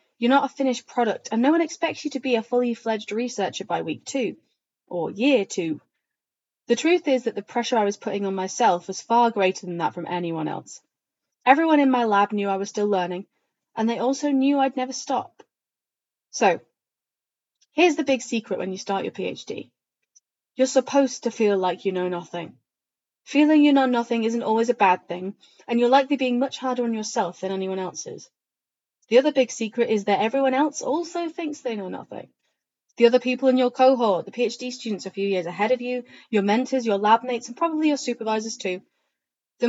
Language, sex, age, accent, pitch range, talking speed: English, female, 30-49, British, 195-265 Hz, 200 wpm